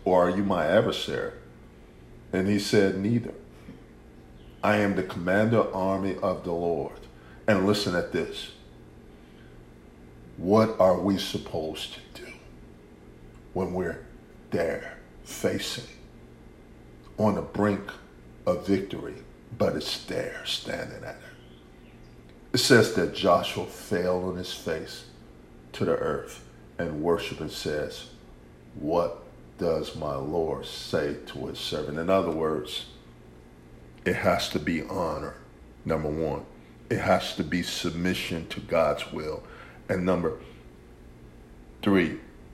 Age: 50-69